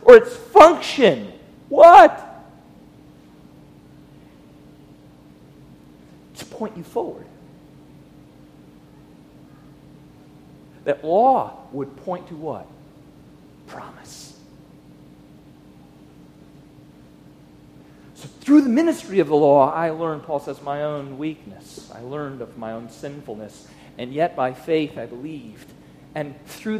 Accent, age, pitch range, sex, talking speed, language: American, 40-59, 145-190 Hz, male, 95 wpm, English